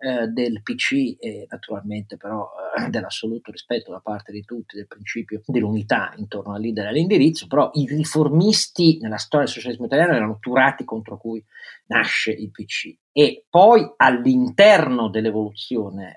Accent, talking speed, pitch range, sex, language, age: native, 150 wpm, 110-140 Hz, male, Italian, 40-59